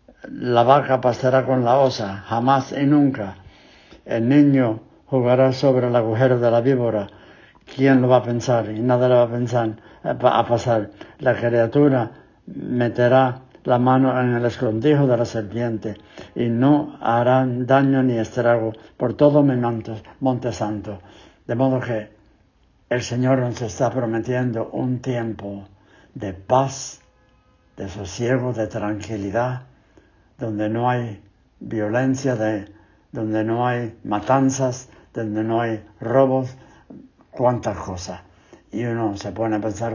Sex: male